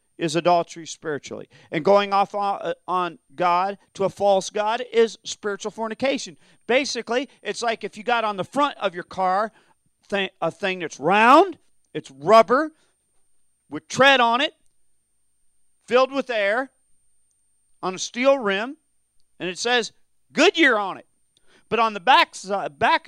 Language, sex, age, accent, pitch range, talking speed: English, male, 40-59, American, 175-265 Hz, 140 wpm